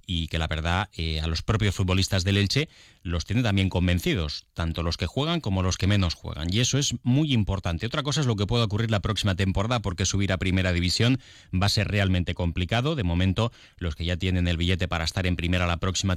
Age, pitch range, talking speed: 30-49, 90-110 Hz, 235 wpm